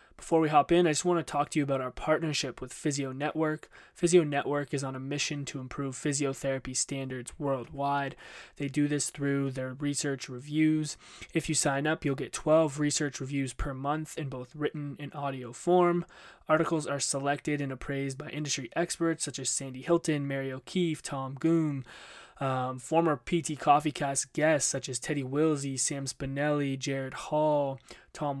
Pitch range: 135-155 Hz